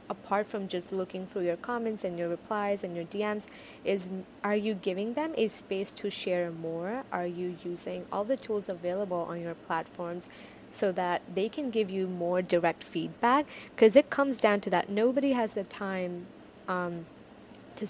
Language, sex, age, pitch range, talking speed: English, female, 20-39, 180-220 Hz, 180 wpm